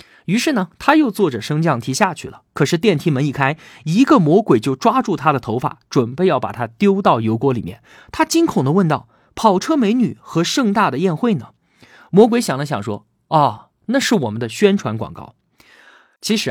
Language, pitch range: Chinese, 130-210 Hz